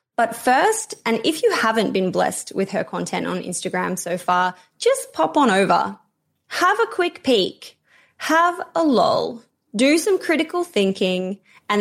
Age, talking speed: 20-39, 160 wpm